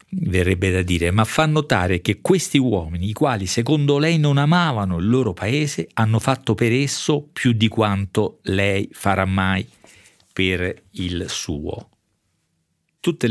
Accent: native